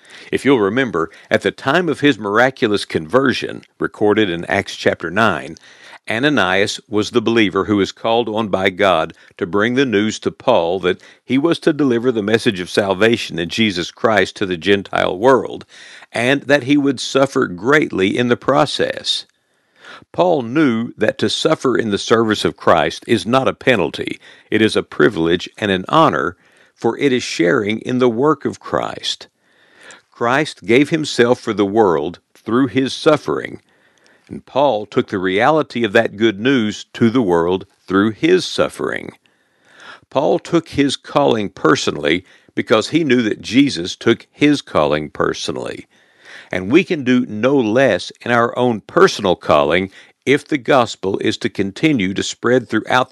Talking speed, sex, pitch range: 165 wpm, male, 105-130 Hz